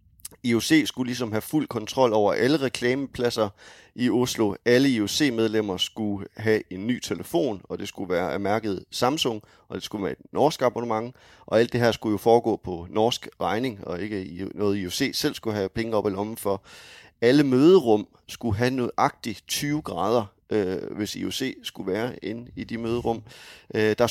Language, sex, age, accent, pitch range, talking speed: English, male, 30-49, Danish, 105-125 Hz, 175 wpm